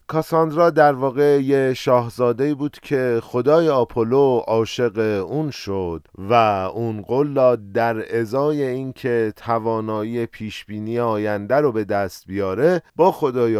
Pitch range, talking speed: 115-140 Hz, 125 wpm